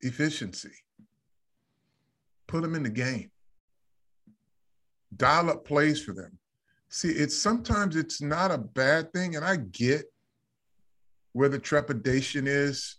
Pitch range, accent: 125-170 Hz, American